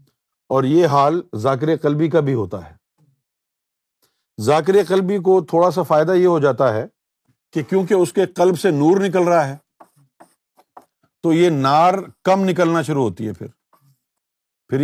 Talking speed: 160 wpm